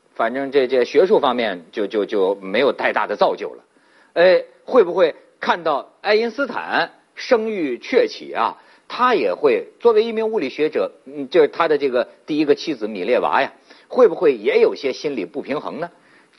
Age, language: 50-69, Chinese